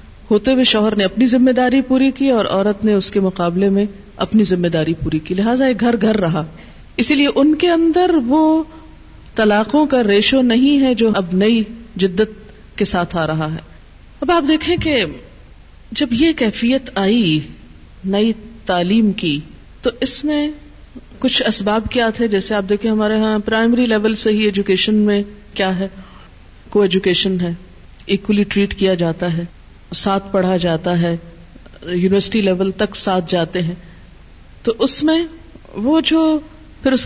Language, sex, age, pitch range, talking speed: Urdu, female, 40-59, 195-260 Hz, 165 wpm